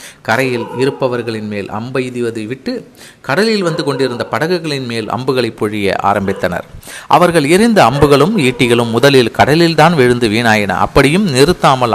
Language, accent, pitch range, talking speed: Tamil, native, 110-140 Hz, 125 wpm